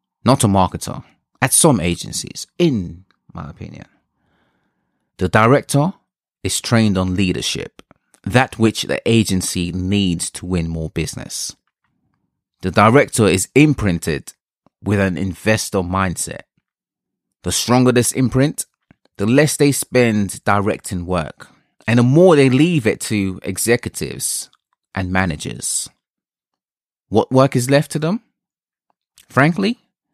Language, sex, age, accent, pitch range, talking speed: English, male, 30-49, British, 95-135 Hz, 115 wpm